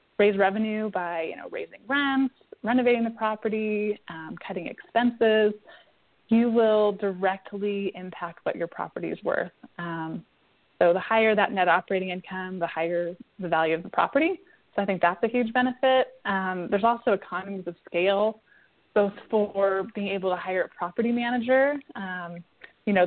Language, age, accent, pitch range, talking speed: English, 20-39, American, 185-220 Hz, 160 wpm